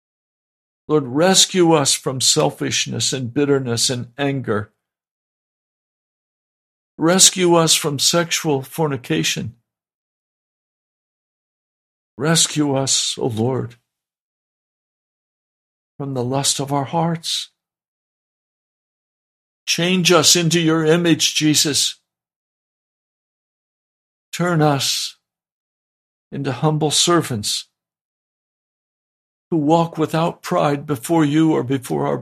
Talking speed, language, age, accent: 80 wpm, English, 60-79, American